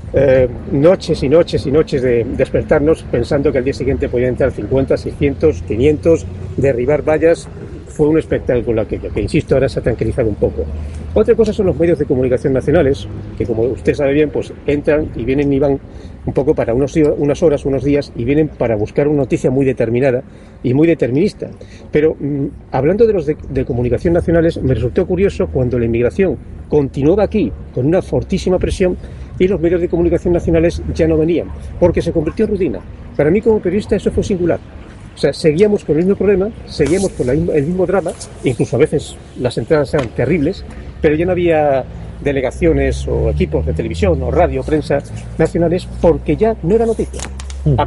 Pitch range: 120-170 Hz